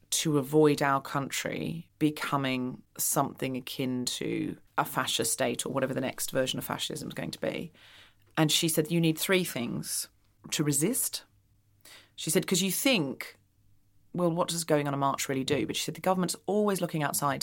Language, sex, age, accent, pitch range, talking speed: English, female, 30-49, British, 140-165 Hz, 185 wpm